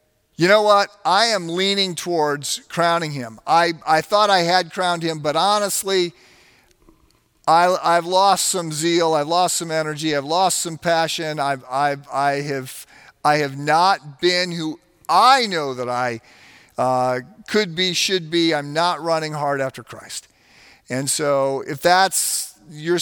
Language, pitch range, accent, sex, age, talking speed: English, 145-175 Hz, American, male, 50-69, 155 wpm